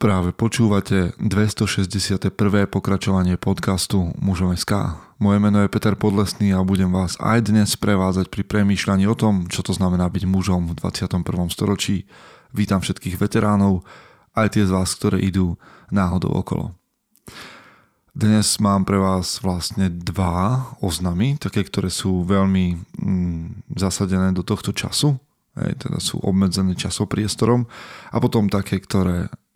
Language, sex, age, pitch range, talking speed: Slovak, male, 20-39, 95-105 Hz, 135 wpm